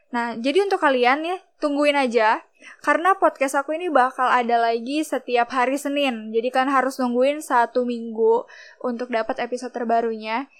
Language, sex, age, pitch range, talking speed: Indonesian, female, 10-29, 240-300 Hz, 155 wpm